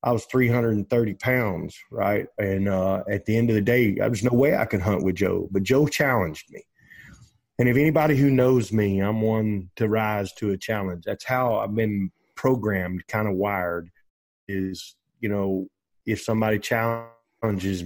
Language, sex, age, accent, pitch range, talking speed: English, male, 30-49, American, 100-115 Hz, 175 wpm